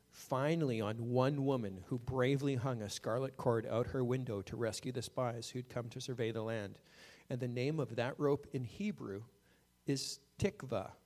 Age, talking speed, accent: 40-59, 180 wpm, American